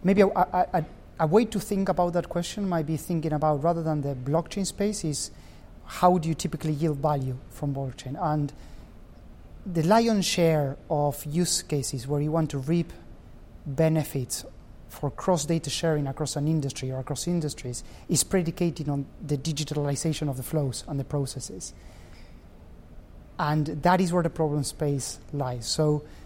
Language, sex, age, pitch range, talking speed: English, male, 30-49, 135-165 Hz, 160 wpm